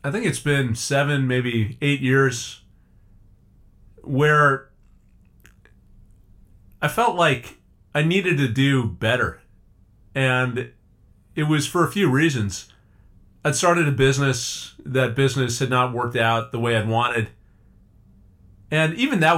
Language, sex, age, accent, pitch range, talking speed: English, male, 40-59, American, 105-145 Hz, 125 wpm